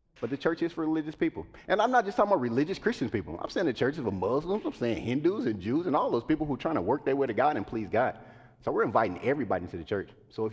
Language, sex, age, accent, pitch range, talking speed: English, male, 30-49, American, 105-135 Hz, 300 wpm